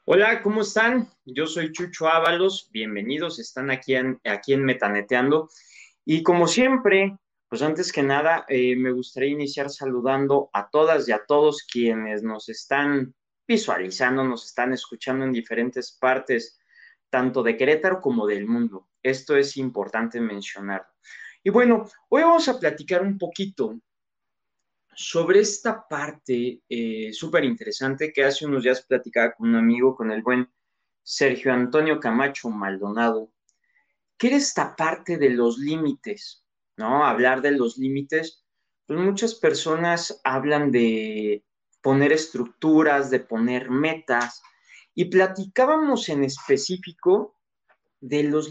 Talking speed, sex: 135 wpm, male